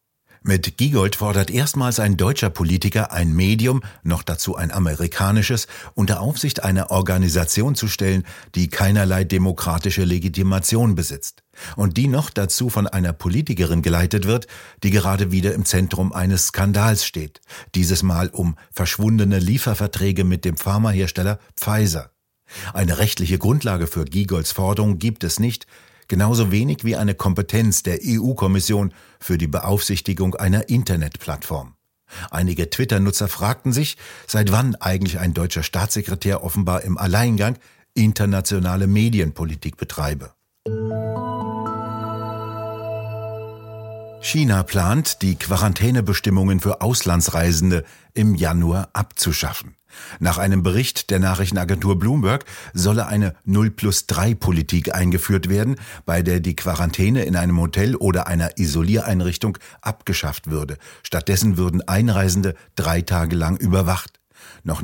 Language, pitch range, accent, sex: German, 90-110 Hz, German, male